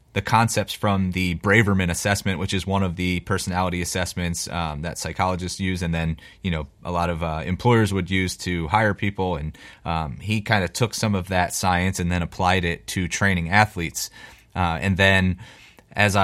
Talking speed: 190 wpm